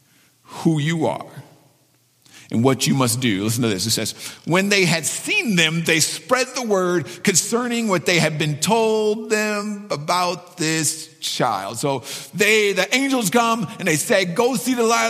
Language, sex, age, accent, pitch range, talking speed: English, male, 50-69, American, 125-175 Hz, 175 wpm